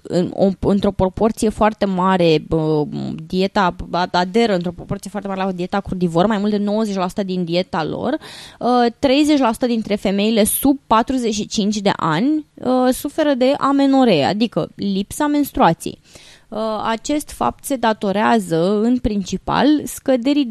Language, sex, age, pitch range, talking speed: Romanian, female, 20-39, 190-255 Hz, 120 wpm